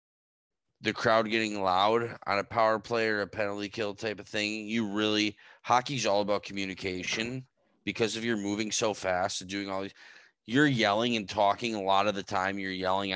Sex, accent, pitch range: male, American, 100-120 Hz